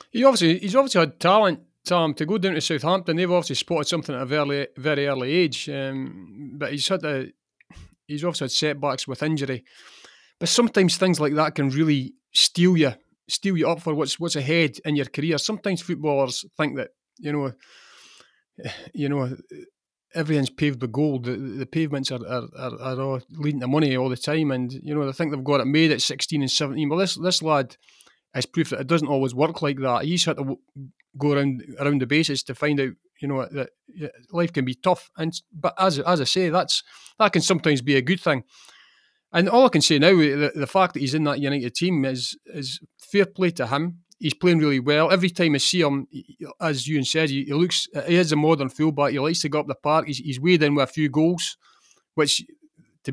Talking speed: 220 wpm